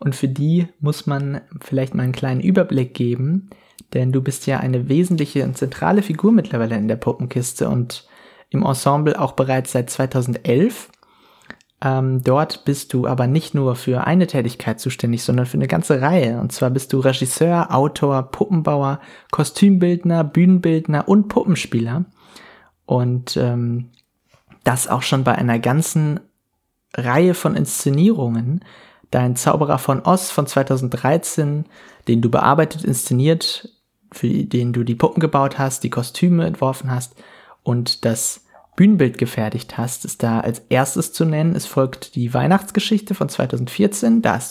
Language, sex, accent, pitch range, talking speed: English, male, German, 125-170 Hz, 145 wpm